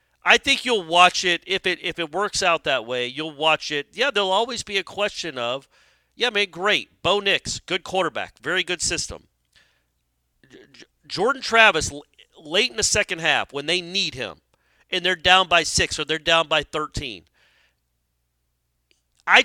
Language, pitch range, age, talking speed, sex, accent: English, 140-205 Hz, 40-59, 170 wpm, male, American